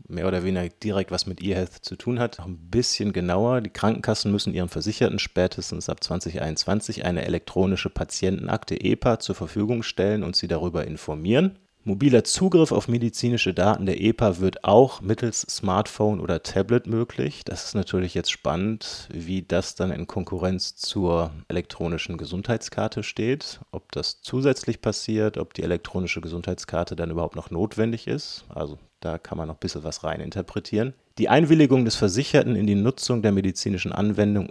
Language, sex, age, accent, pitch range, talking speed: German, male, 30-49, German, 90-115 Hz, 160 wpm